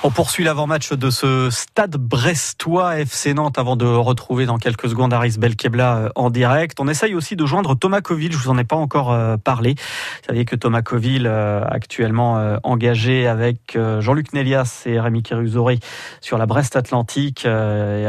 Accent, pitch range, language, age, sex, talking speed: French, 120-150 Hz, French, 30-49, male, 170 wpm